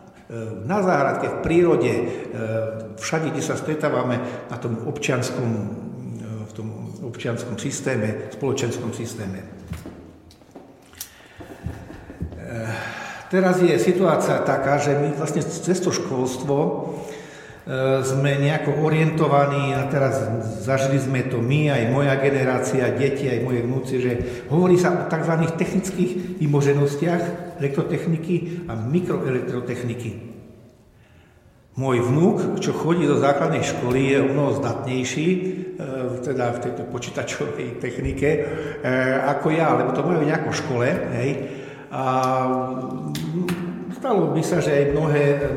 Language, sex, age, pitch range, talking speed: Slovak, male, 60-79, 120-150 Hz, 110 wpm